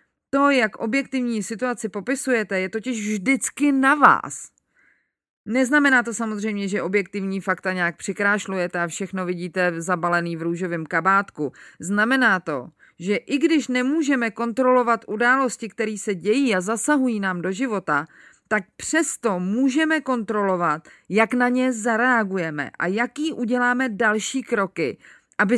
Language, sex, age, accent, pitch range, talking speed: Czech, female, 30-49, native, 200-255 Hz, 130 wpm